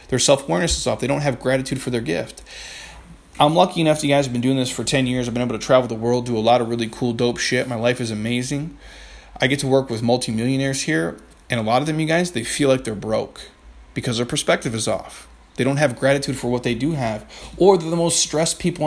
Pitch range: 120-145 Hz